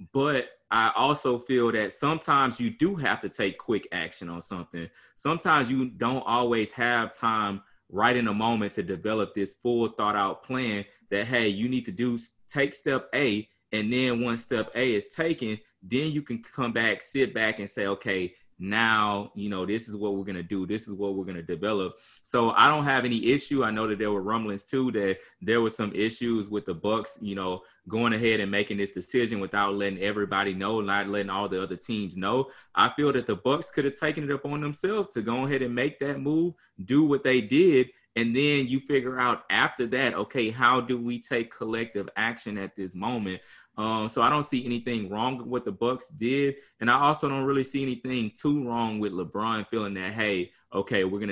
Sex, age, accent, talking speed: male, 20-39, American, 215 wpm